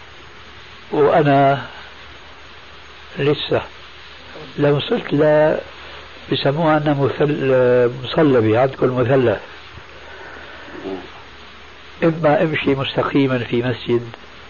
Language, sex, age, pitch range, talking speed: Arabic, male, 60-79, 95-140 Hz, 65 wpm